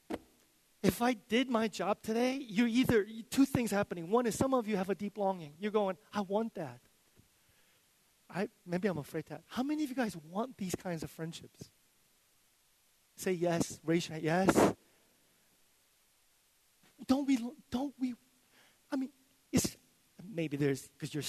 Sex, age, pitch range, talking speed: male, 30-49, 175-255 Hz, 160 wpm